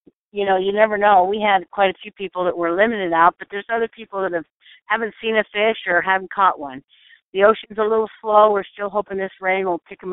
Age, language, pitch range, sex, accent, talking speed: 50-69, English, 175-215 Hz, female, American, 255 wpm